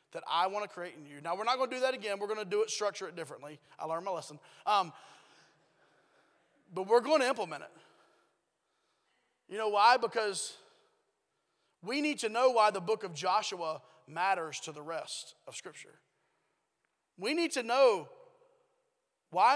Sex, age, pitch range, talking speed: male, 30-49, 185-260 Hz, 180 wpm